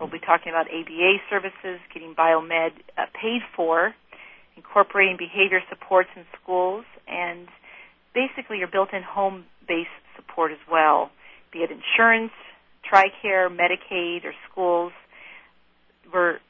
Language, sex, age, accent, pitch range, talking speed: English, female, 40-59, American, 175-225 Hz, 115 wpm